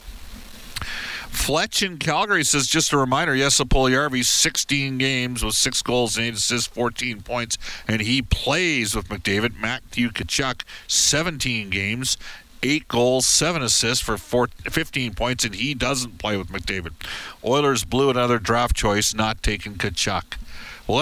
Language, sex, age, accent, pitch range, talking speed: English, male, 50-69, American, 105-140 Hz, 145 wpm